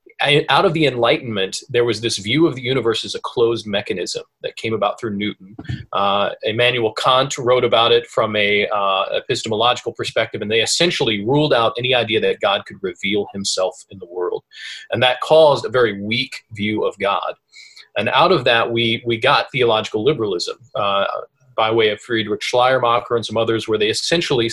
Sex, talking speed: male, 185 wpm